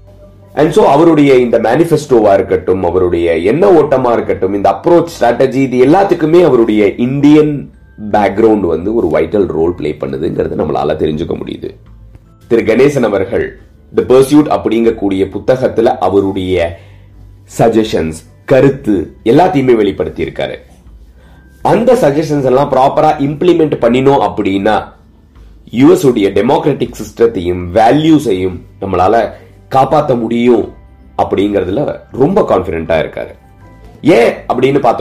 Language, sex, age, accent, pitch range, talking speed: Tamil, male, 30-49, native, 100-155 Hz, 45 wpm